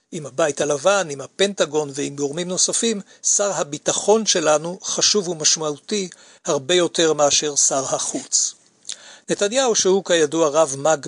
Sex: male